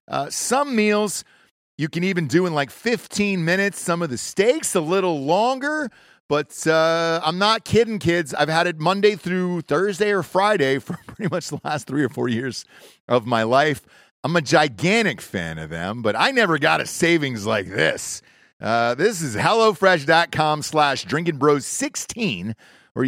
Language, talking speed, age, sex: English, 170 wpm, 40-59, male